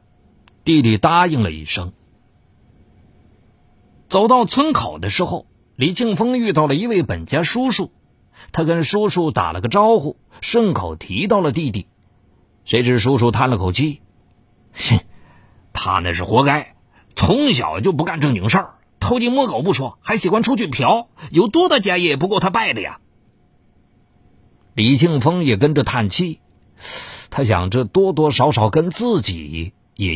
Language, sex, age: Chinese, male, 50-69